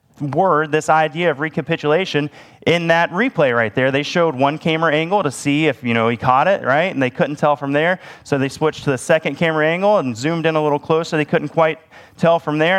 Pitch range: 140-170 Hz